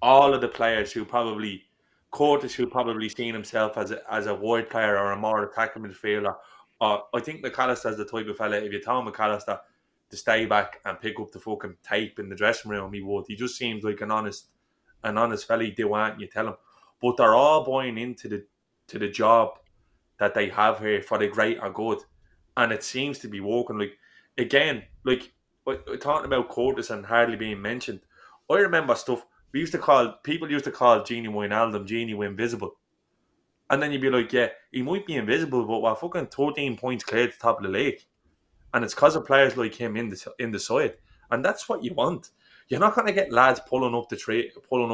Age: 20-39